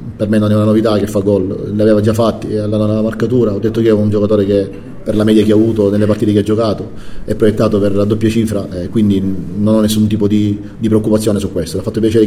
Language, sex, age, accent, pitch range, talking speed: Italian, male, 30-49, native, 105-120 Hz, 255 wpm